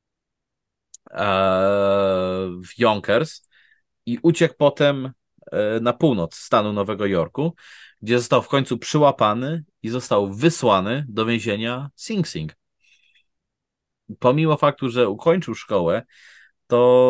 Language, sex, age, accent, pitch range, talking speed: Polish, male, 30-49, native, 100-135 Hz, 100 wpm